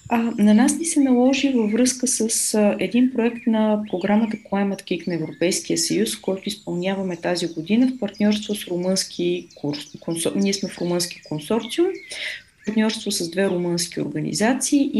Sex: female